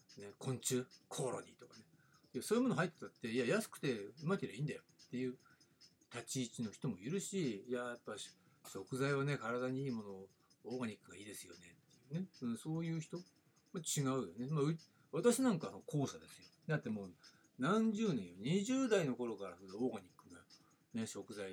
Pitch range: 110-180 Hz